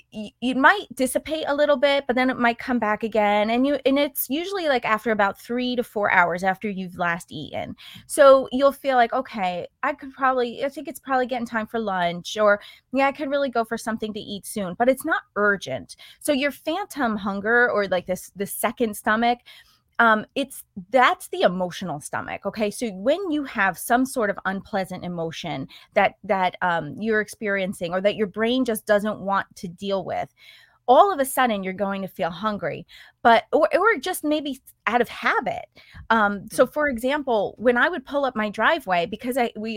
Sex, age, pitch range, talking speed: female, 20-39, 205-265 Hz, 200 wpm